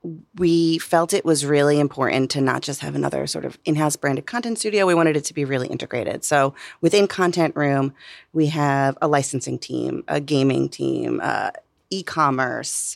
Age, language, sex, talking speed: 30-49, English, female, 175 wpm